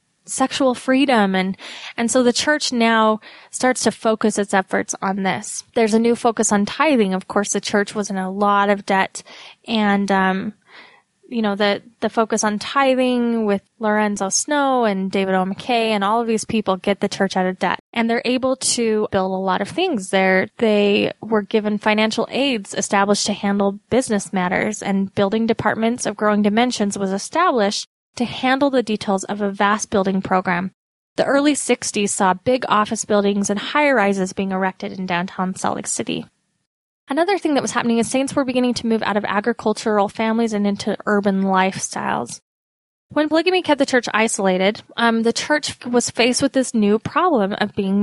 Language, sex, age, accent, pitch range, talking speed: English, female, 10-29, American, 200-245 Hz, 185 wpm